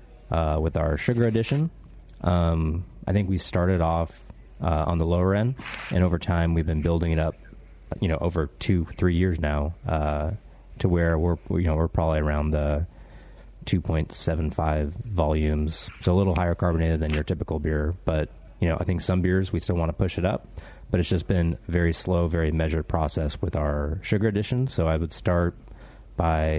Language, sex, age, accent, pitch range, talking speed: English, male, 30-49, American, 80-95 Hz, 190 wpm